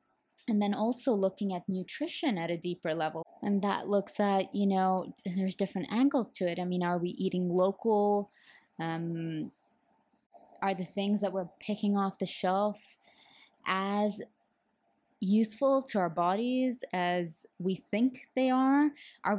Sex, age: female, 20-39